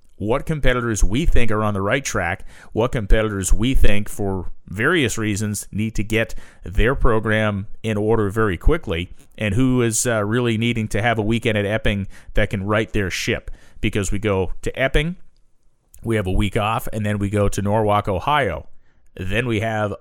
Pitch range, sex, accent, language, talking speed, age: 100-115 Hz, male, American, English, 185 wpm, 30-49